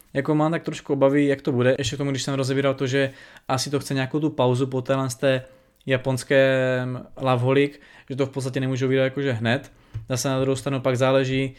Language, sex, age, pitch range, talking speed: Czech, male, 20-39, 130-145 Hz, 205 wpm